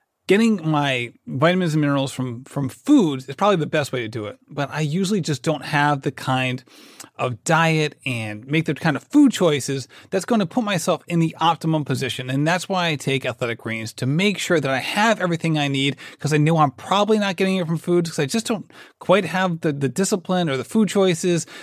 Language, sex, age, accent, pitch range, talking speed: English, male, 30-49, American, 140-185 Hz, 225 wpm